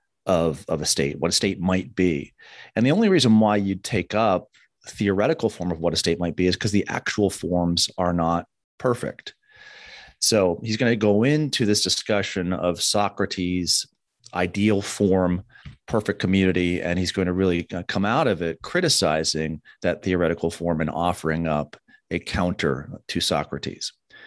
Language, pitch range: English, 85-110 Hz